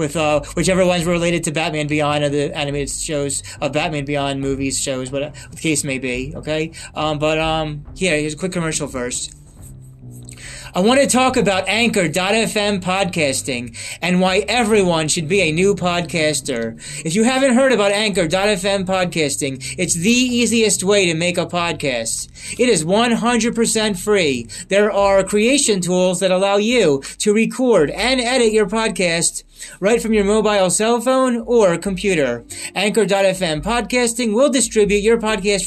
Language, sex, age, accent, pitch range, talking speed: English, male, 30-49, American, 165-220 Hz, 160 wpm